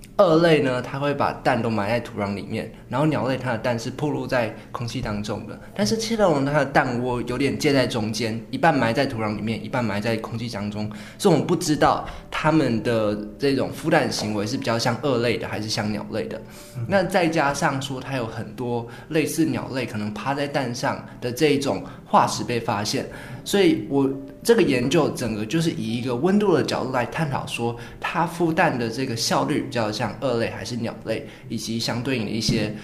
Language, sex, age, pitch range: Chinese, male, 20-39, 115-145 Hz